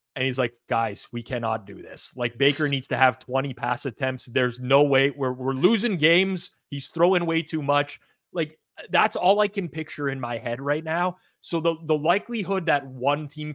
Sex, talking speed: male, 205 wpm